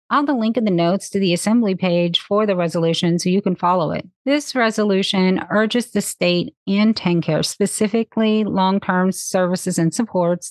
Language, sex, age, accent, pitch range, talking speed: English, female, 30-49, American, 175-220 Hz, 165 wpm